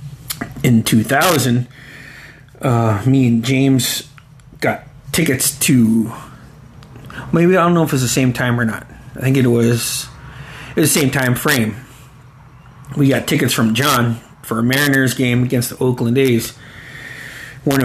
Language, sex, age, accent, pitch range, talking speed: English, male, 30-49, American, 125-145 Hz, 150 wpm